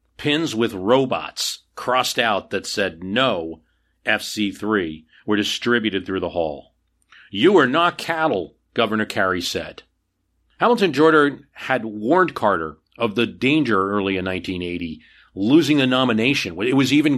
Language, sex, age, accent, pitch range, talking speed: English, male, 40-59, American, 95-125 Hz, 135 wpm